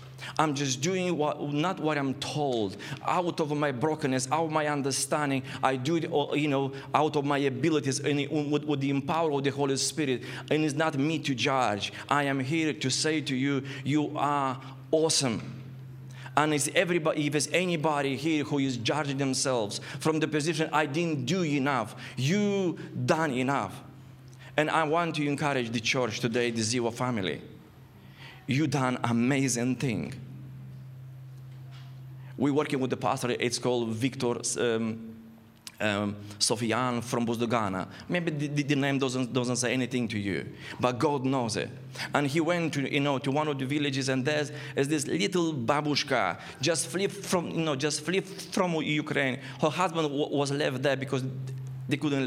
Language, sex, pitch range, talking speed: English, male, 130-150 Hz, 170 wpm